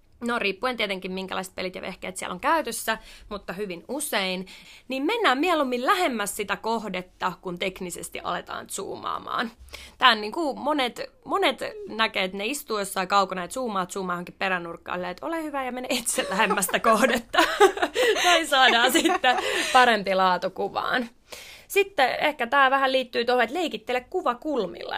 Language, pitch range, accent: Finnish, 190-270 Hz, native